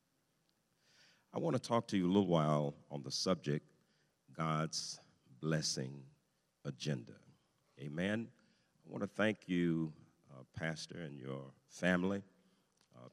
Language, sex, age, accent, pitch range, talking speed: English, male, 50-69, American, 75-95 Hz, 125 wpm